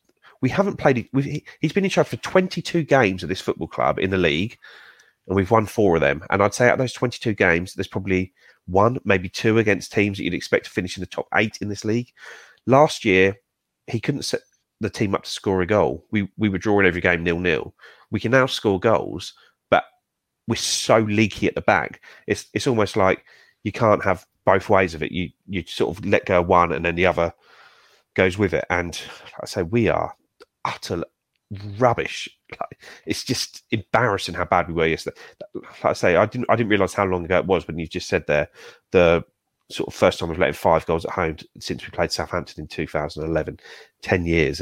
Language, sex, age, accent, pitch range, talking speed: English, male, 30-49, British, 85-110 Hz, 220 wpm